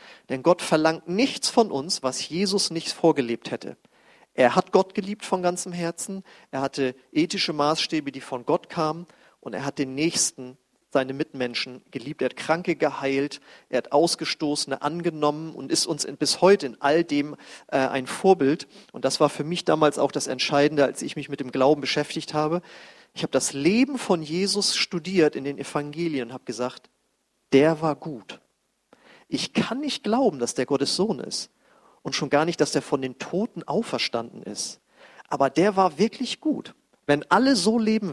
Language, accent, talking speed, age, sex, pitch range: German, German, 180 wpm, 40-59, male, 140-190 Hz